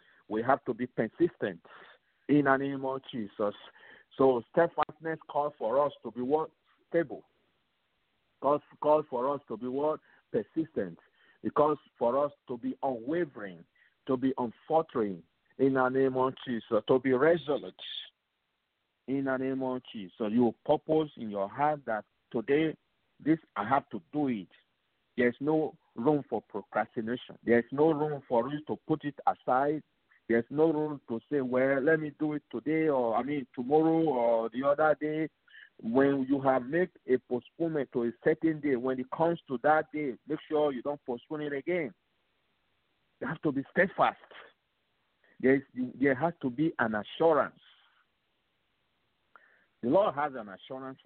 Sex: male